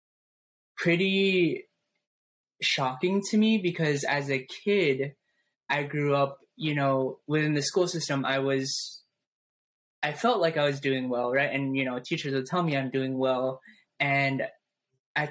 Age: 10-29